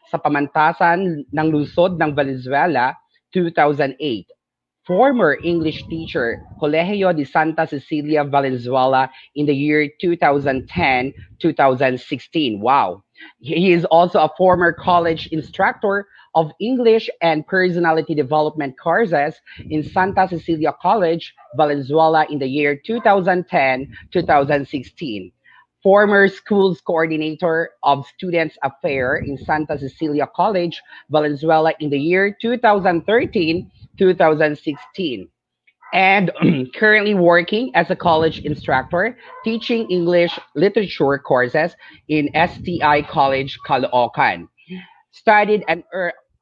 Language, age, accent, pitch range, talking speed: Filipino, 30-49, native, 145-185 Hz, 95 wpm